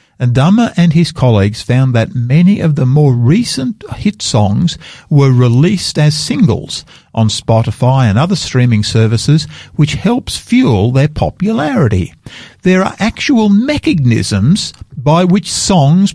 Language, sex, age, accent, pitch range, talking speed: English, male, 50-69, Australian, 120-170 Hz, 135 wpm